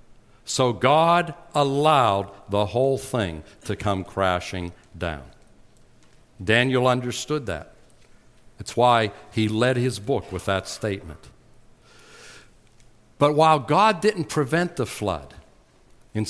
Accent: American